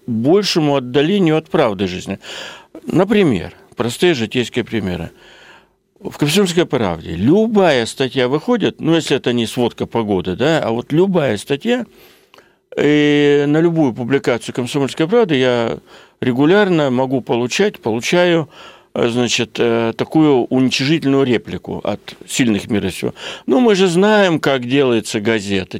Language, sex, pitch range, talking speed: Russian, male, 115-165 Hz, 120 wpm